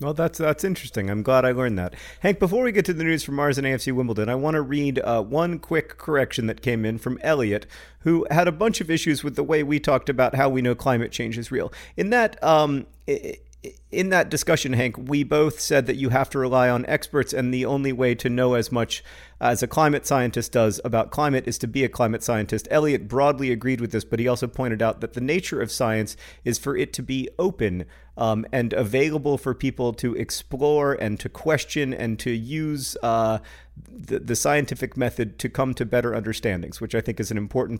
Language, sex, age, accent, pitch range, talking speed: English, male, 40-59, American, 115-145 Hz, 225 wpm